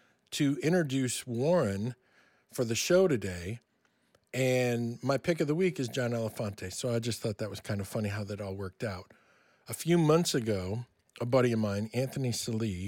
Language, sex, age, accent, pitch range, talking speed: English, male, 40-59, American, 105-135 Hz, 185 wpm